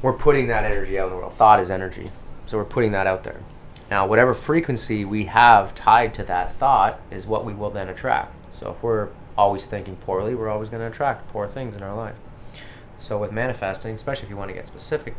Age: 20-39